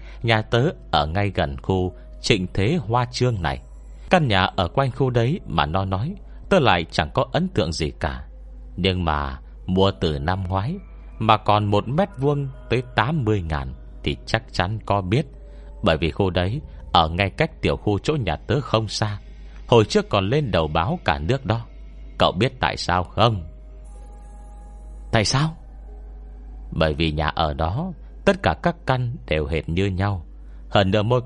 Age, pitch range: 30-49, 75-110 Hz